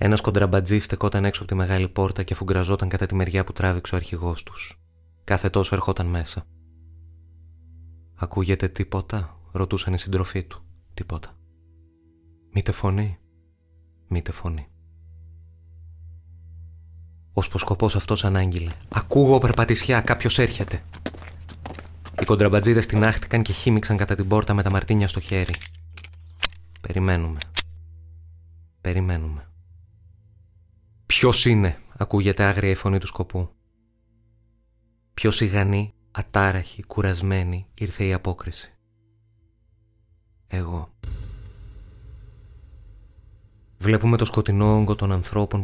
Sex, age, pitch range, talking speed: male, 20-39, 85-105 Hz, 105 wpm